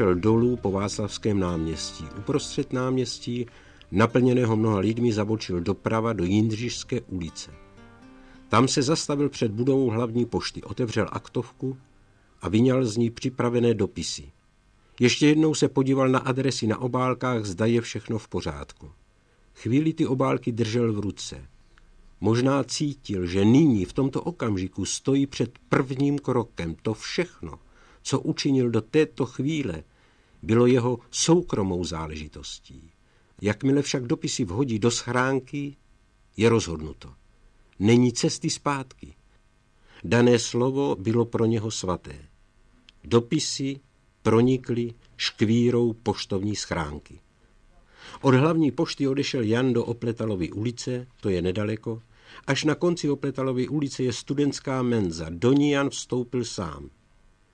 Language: Czech